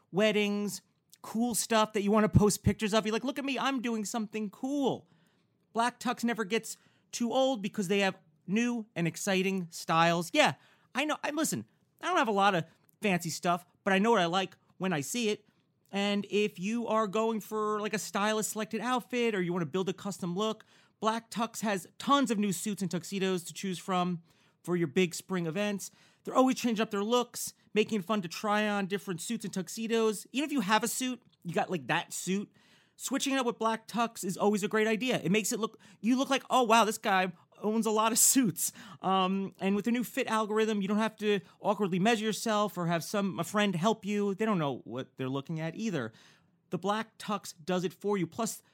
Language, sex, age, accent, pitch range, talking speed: English, male, 30-49, American, 185-225 Hz, 225 wpm